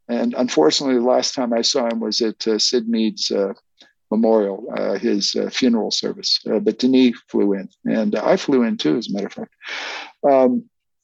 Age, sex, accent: 50-69, male, American